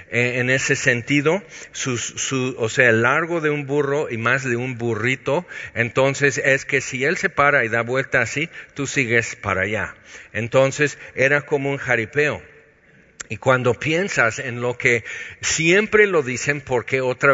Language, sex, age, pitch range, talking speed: Spanish, male, 50-69, 115-135 Hz, 160 wpm